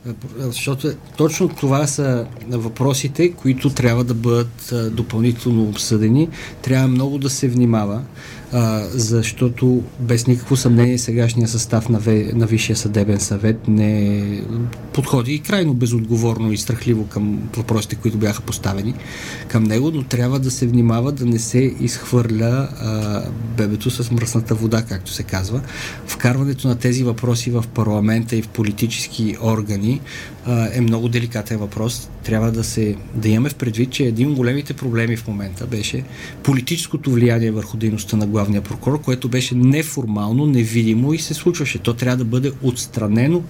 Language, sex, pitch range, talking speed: Bulgarian, male, 115-135 Hz, 145 wpm